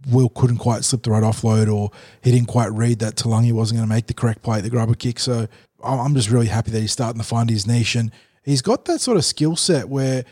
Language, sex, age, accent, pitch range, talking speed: English, male, 20-39, Australian, 115-135 Hz, 275 wpm